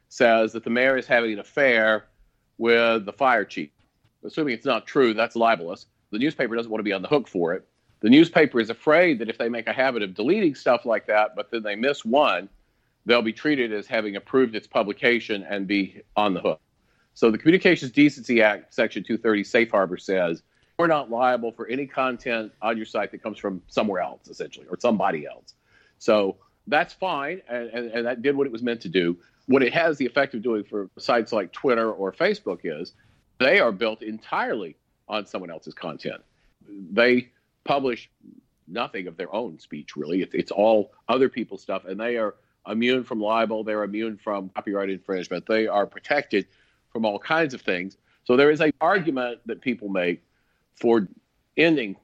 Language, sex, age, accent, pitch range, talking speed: English, male, 50-69, American, 105-125 Hz, 195 wpm